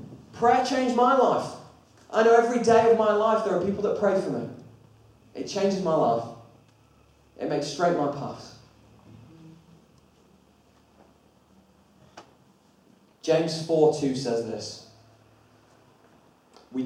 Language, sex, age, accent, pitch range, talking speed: English, male, 20-39, British, 115-145 Hz, 115 wpm